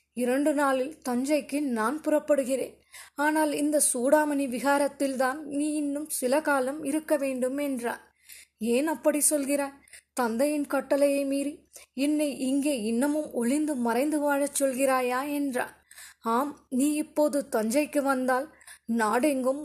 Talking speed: 110 wpm